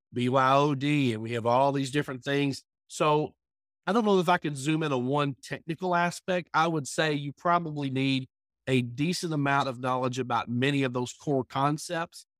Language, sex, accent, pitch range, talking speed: English, male, American, 125-155 Hz, 185 wpm